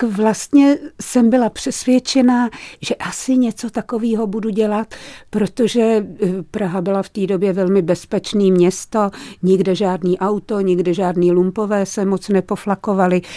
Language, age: Czech, 50-69